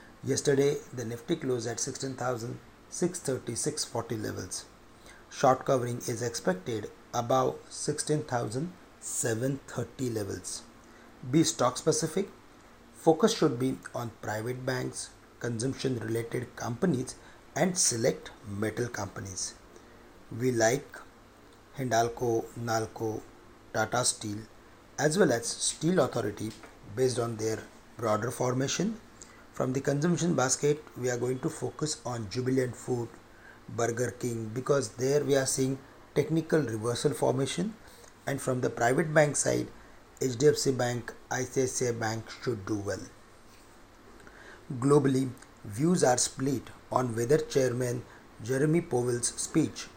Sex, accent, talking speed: male, Indian, 110 wpm